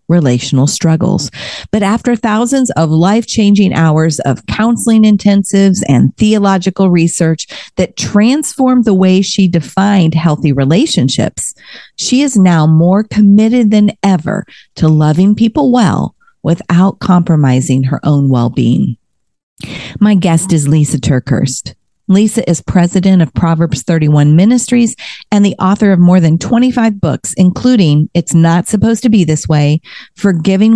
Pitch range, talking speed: 150-205 Hz, 130 wpm